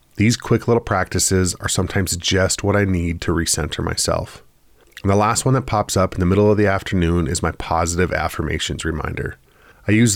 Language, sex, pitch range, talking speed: English, male, 90-105 Hz, 195 wpm